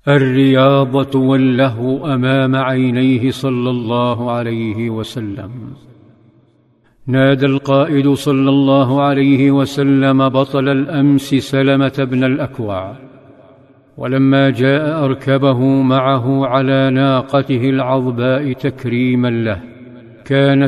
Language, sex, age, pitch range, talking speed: Arabic, male, 50-69, 130-140 Hz, 85 wpm